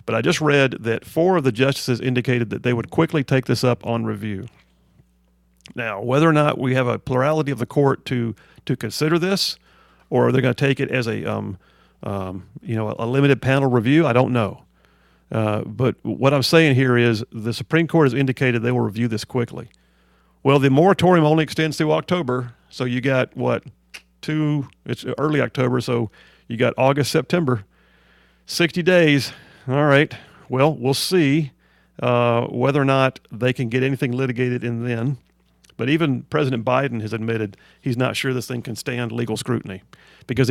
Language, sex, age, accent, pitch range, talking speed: English, male, 40-59, American, 115-145 Hz, 180 wpm